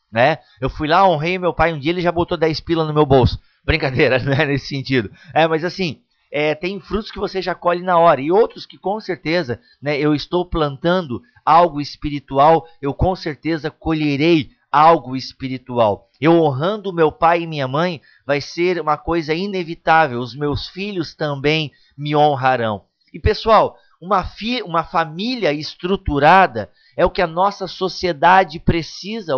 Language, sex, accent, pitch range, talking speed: Portuguese, male, Brazilian, 150-190 Hz, 170 wpm